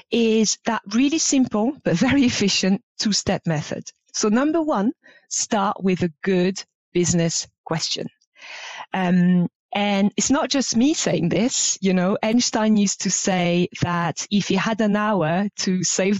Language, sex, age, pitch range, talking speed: English, female, 30-49, 175-235 Hz, 150 wpm